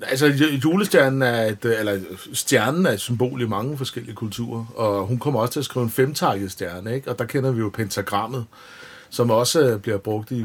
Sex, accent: male, native